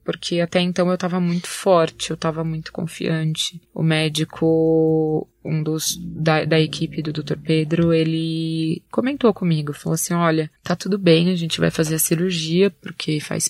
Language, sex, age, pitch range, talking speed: Portuguese, female, 20-39, 160-185 Hz, 170 wpm